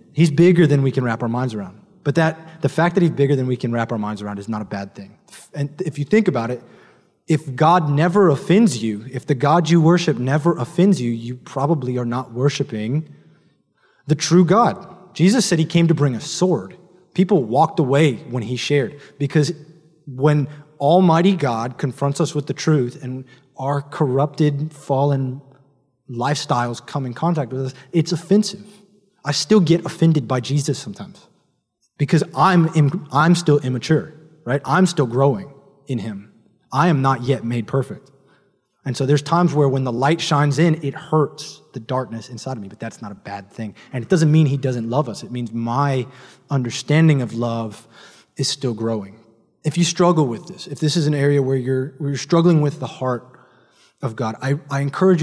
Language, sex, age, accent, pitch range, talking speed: English, male, 20-39, American, 125-165 Hz, 195 wpm